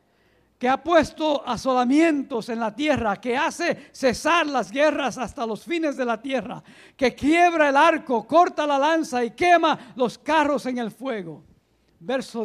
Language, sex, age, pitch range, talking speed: English, male, 50-69, 225-300 Hz, 160 wpm